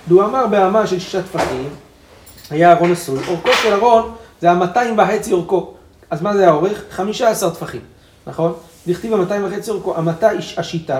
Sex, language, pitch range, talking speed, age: male, Hebrew, 155-200 Hz, 165 wpm, 40-59